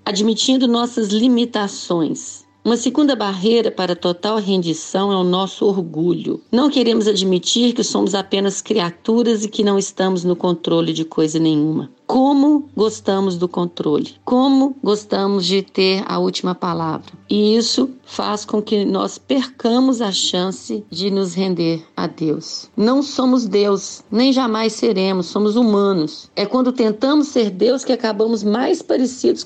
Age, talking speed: 40-59, 145 wpm